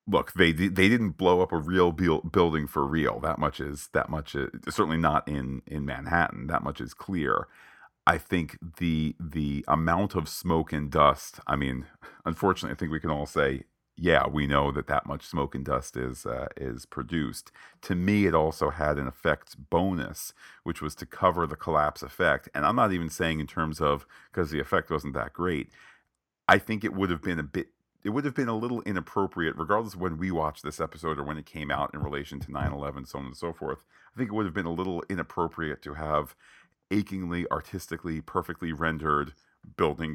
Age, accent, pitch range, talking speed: 40-59, American, 75-85 Hz, 205 wpm